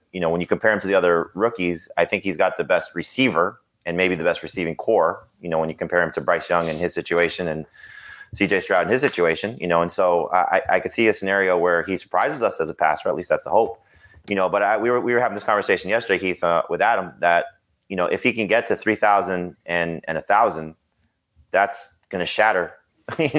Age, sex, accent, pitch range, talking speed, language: 30-49, male, American, 85-110 Hz, 250 wpm, English